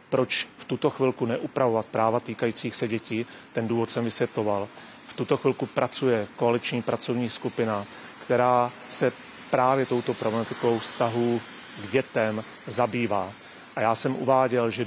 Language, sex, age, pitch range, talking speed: Czech, male, 30-49, 115-125 Hz, 135 wpm